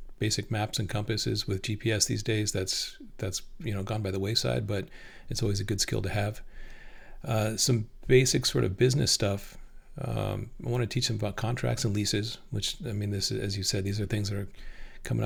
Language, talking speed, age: English, 210 wpm, 40-59